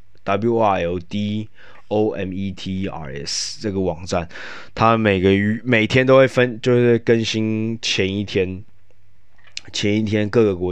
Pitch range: 90-105 Hz